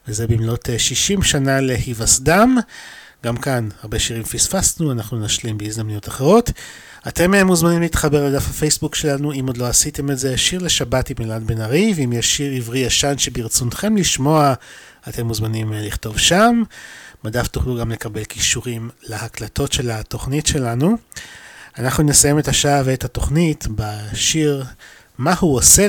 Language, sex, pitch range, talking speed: Hebrew, male, 115-150 Hz, 140 wpm